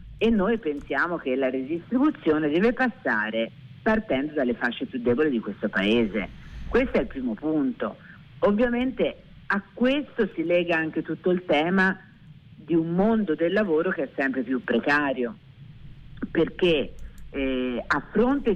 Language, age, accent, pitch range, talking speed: Italian, 50-69, native, 135-215 Hz, 140 wpm